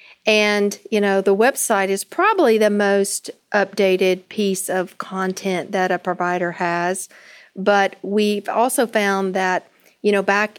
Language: English